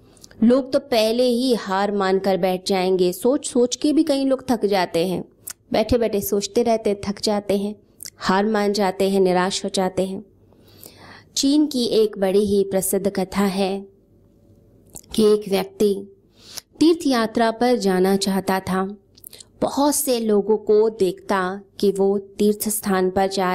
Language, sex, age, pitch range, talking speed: Hindi, female, 20-39, 190-230 Hz, 155 wpm